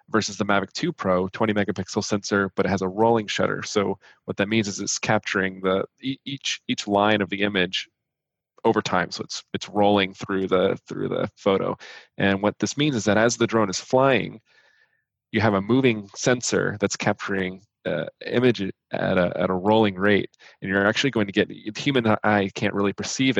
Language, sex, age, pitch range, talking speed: English, male, 20-39, 95-105 Hz, 195 wpm